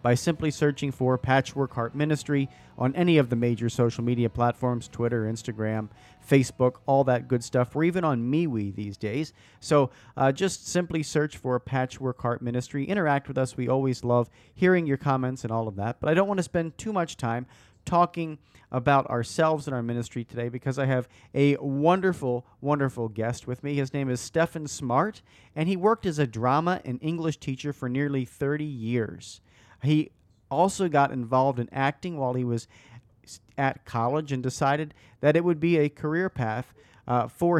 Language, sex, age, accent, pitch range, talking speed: English, male, 40-59, American, 120-150 Hz, 185 wpm